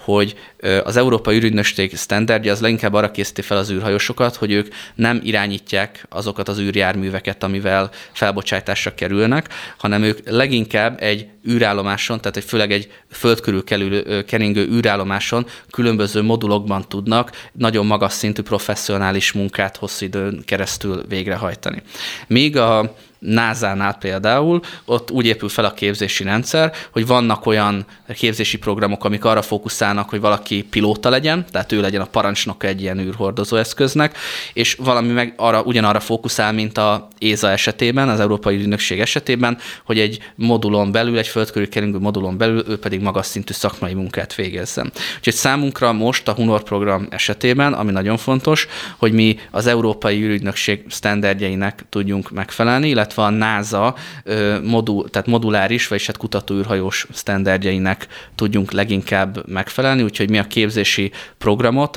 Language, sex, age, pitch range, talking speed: Hungarian, male, 20-39, 100-115 Hz, 140 wpm